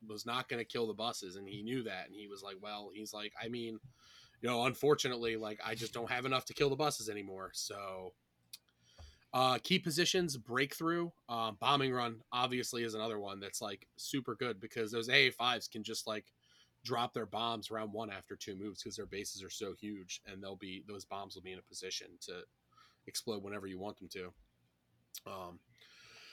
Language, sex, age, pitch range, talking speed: English, male, 20-39, 105-140 Hz, 205 wpm